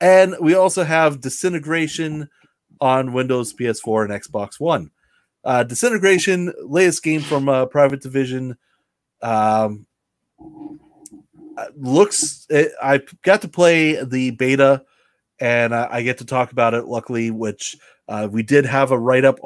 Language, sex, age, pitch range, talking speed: English, male, 30-49, 130-180 Hz, 135 wpm